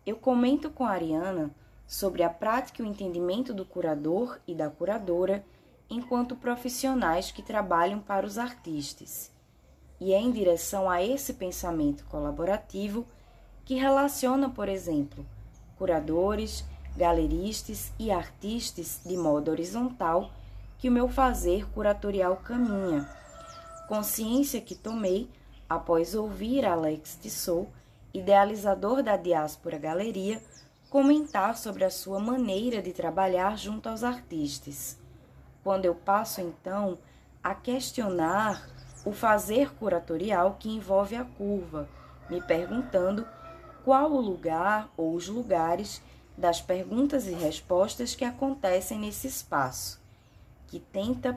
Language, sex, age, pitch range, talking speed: Portuguese, female, 20-39, 165-235 Hz, 120 wpm